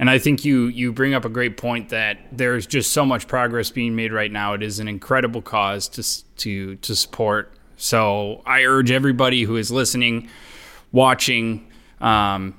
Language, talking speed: English, 180 wpm